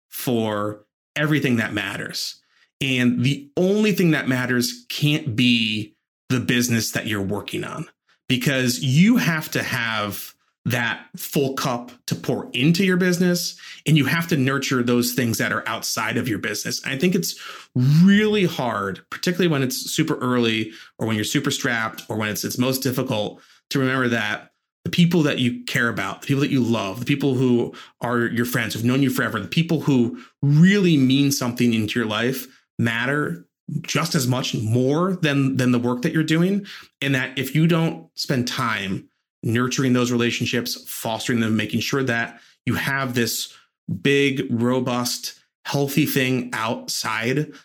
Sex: male